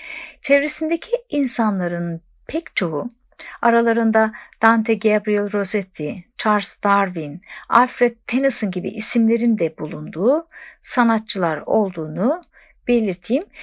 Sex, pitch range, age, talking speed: female, 190-275 Hz, 60-79, 85 wpm